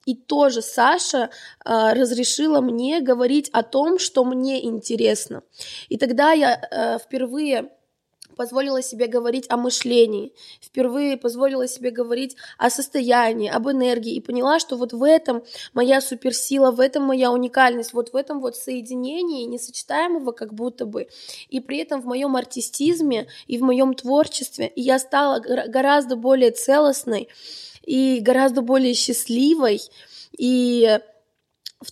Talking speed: 135 wpm